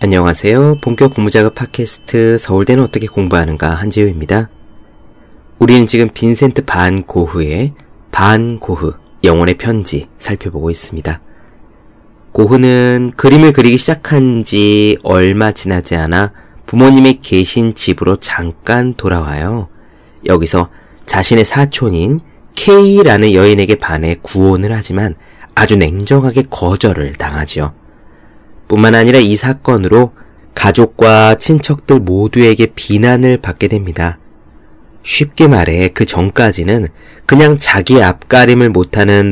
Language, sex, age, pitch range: Korean, male, 30-49, 85-120 Hz